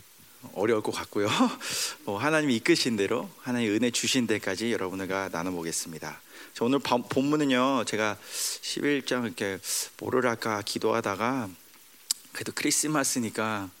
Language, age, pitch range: Korean, 40-59, 100-140 Hz